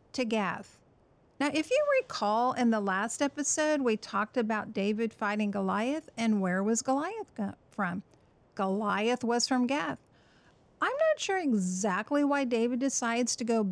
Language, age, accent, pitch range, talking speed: English, 50-69, American, 210-255 Hz, 150 wpm